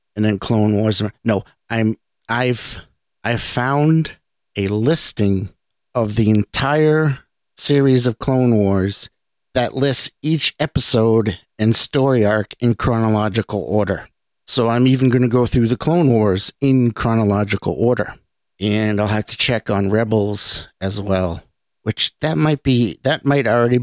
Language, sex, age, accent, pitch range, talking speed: English, male, 50-69, American, 110-130 Hz, 145 wpm